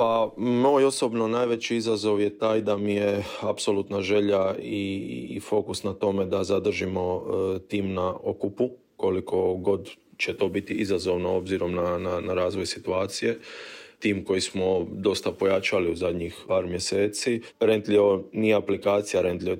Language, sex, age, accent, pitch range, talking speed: Croatian, male, 30-49, native, 95-105 Hz, 145 wpm